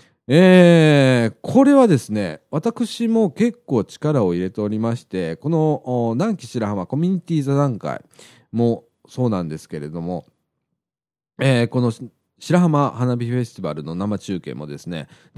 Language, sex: Japanese, male